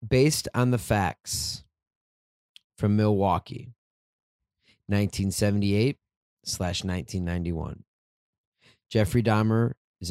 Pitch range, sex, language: 95-115 Hz, male, English